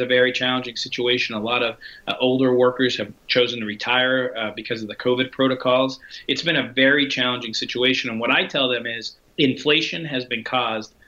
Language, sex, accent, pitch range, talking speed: English, male, American, 120-145 Hz, 195 wpm